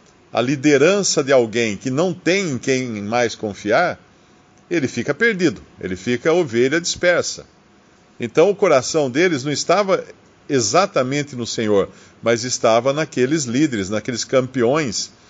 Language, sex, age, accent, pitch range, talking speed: Portuguese, male, 50-69, Brazilian, 110-155 Hz, 135 wpm